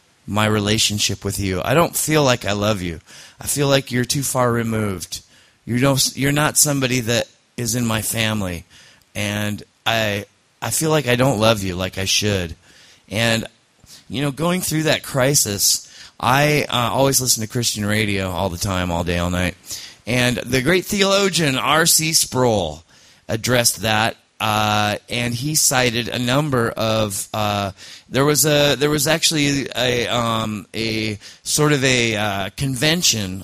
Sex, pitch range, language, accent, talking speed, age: male, 105-135 Hz, English, American, 160 wpm, 30-49